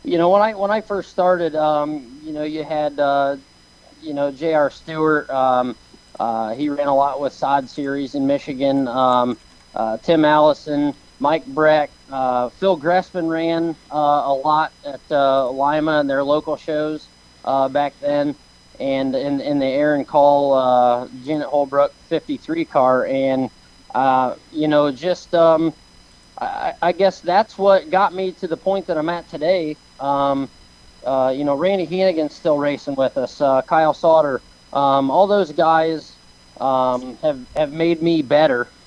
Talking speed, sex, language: 165 wpm, male, English